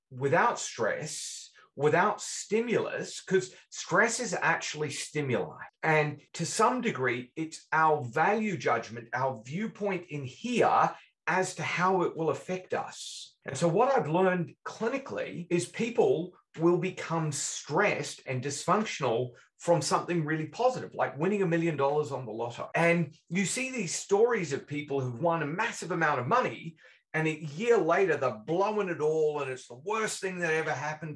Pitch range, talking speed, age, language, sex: 150-205 Hz, 160 wpm, 30-49, English, male